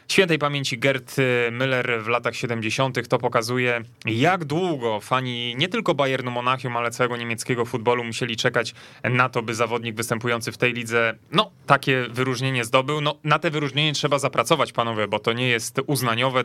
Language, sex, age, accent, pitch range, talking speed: Polish, male, 20-39, native, 120-135 Hz, 170 wpm